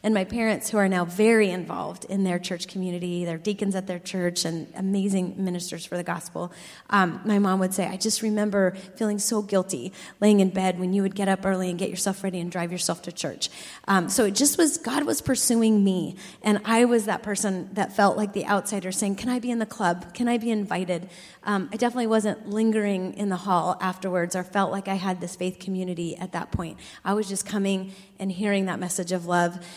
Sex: female